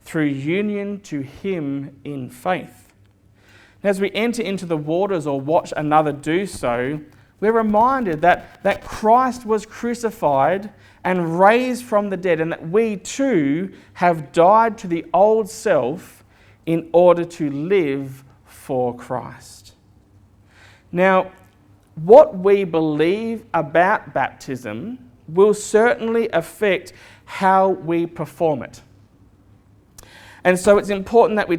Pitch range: 125-190 Hz